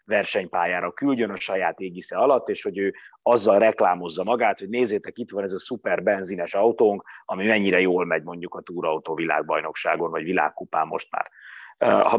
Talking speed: 160 wpm